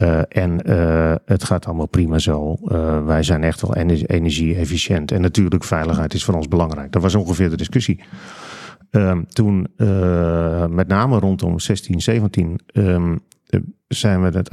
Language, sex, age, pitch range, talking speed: Dutch, male, 40-59, 85-105 Hz, 160 wpm